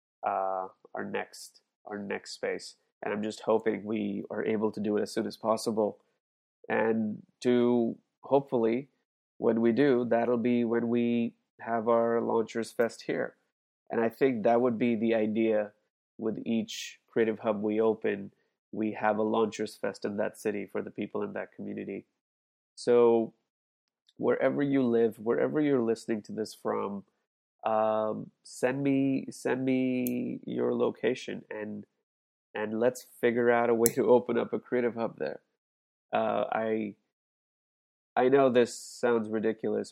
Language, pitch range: English, 105-120 Hz